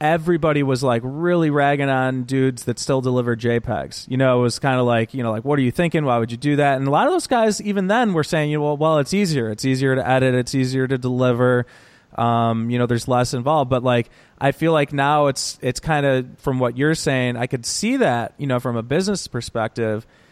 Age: 30-49